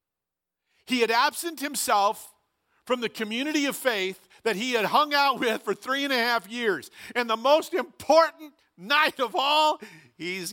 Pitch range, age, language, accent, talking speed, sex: 135-220 Hz, 50-69, English, American, 165 wpm, male